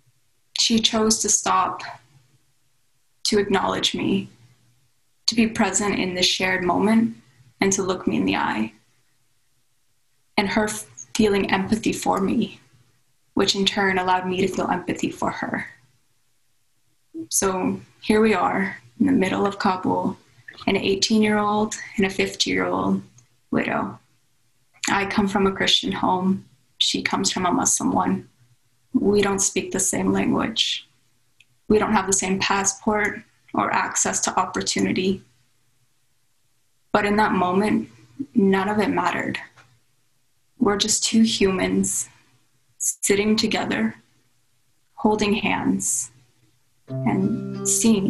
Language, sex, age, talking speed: English, female, 20-39, 120 wpm